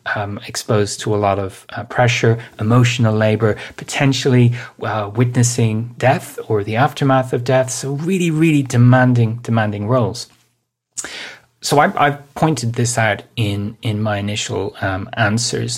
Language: English